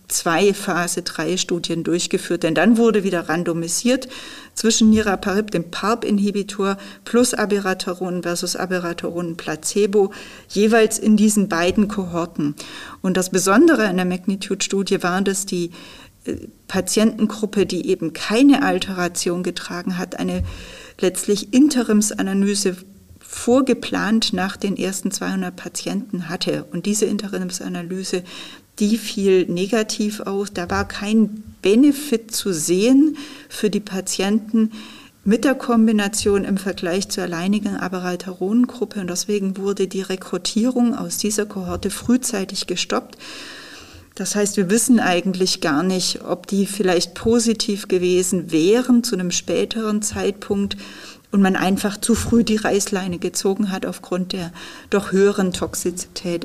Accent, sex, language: German, female, German